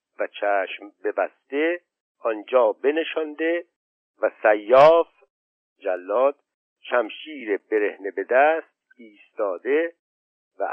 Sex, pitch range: male, 130-180 Hz